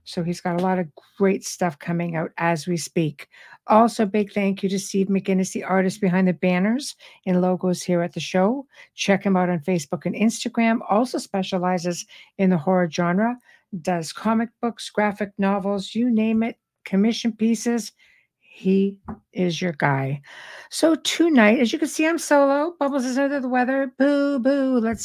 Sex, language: female, English